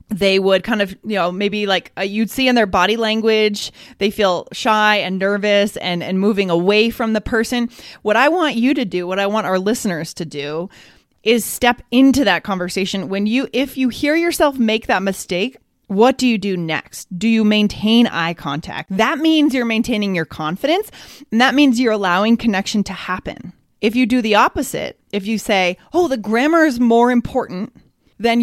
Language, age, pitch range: Chinese, 30-49, 190-245 Hz